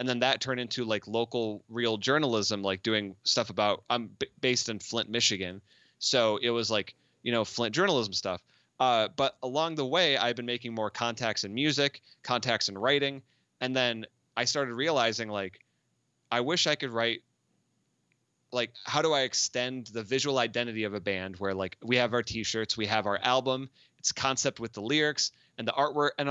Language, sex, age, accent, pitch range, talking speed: English, male, 30-49, American, 110-135 Hz, 190 wpm